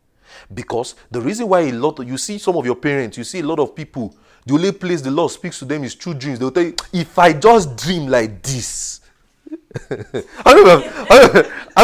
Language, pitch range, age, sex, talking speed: English, 125-190 Hz, 30-49, male, 215 wpm